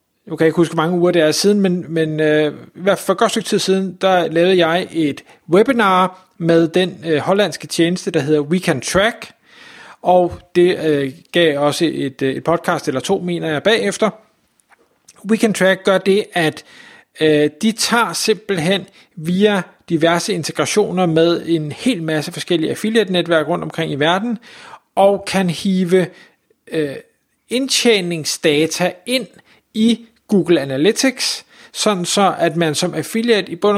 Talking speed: 155 wpm